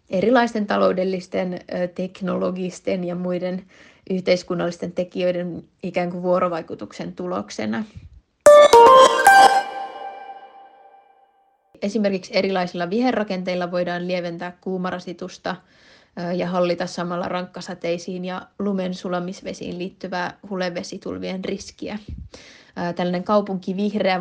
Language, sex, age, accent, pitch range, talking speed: Finnish, female, 20-39, native, 180-200 Hz, 70 wpm